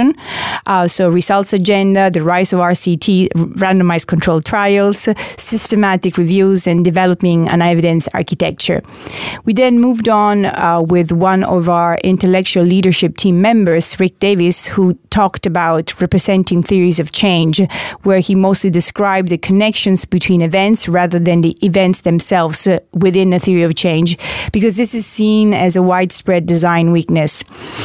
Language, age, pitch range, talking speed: English, 30-49, 170-200 Hz, 145 wpm